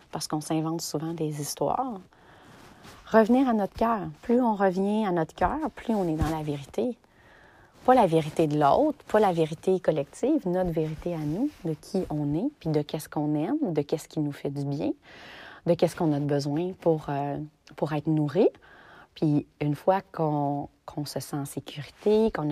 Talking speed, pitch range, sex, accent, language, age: 190 wpm, 155-205 Hz, female, Canadian, French, 30-49